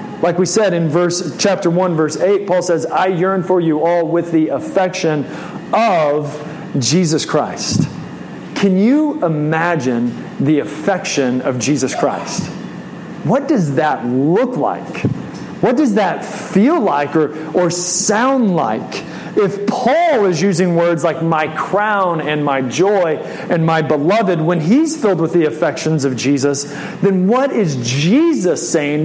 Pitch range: 150-195 Hz